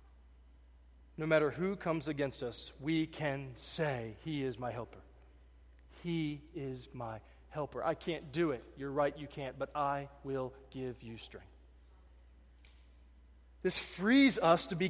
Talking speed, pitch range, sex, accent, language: 145 wpm, 135-225 Hz, male, American, English